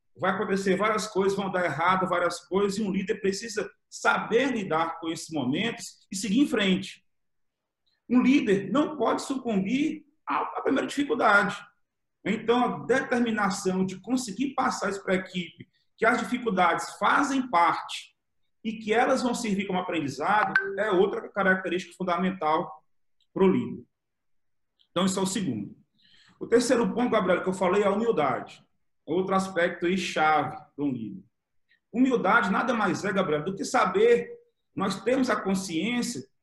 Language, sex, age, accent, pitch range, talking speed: Portuguese, male, 40-59, Brazilian, 185-255 Hz, 150 wpm